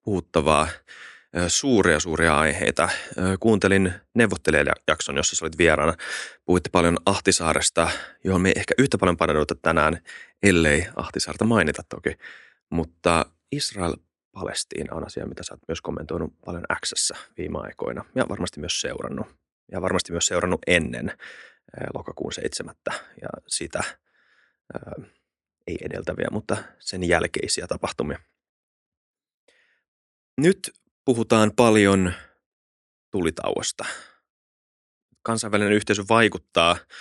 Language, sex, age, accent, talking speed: Finnish, male, 30-49, native, 105 wpm